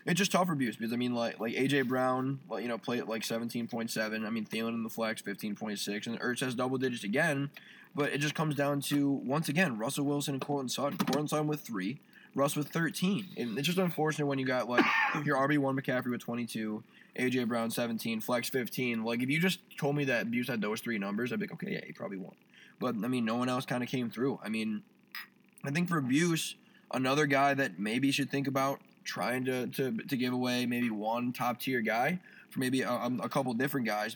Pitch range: 120-145 Hz